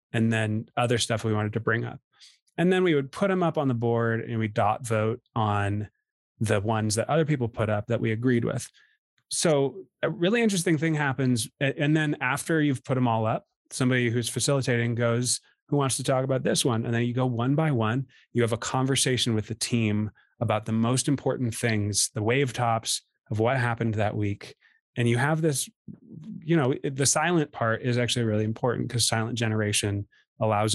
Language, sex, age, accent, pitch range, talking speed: English, male, 30-49, American, 110-140 Hz, 205 wpm